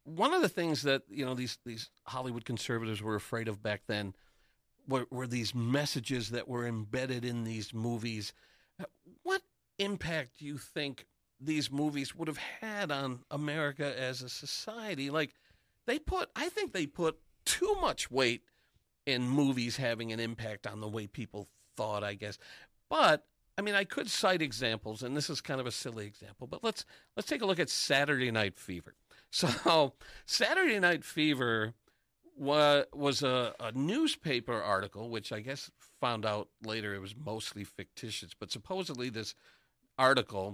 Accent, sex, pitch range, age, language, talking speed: American, male, 105-145 Hz, 50-69, English, 165 wpm